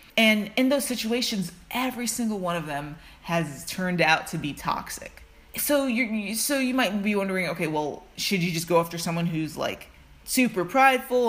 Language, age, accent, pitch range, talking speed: English, 20-39, American, 160-215 Hz, 180 wpm